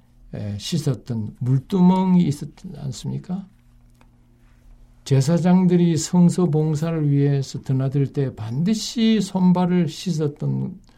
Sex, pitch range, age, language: male, 115-160 Hz, 60-79, Korean